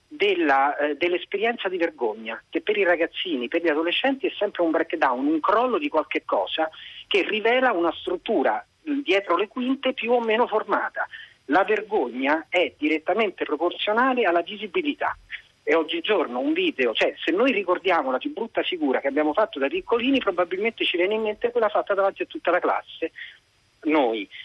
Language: Italian